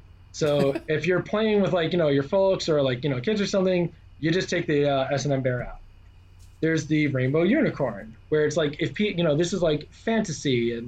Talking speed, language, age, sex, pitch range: 225 wpm, English, 20-39, male, 115-170 Hz